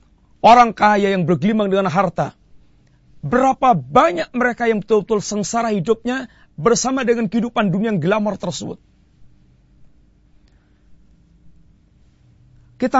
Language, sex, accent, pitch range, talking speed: Indonesian, male, native, 155-230 Hz, 95 wpm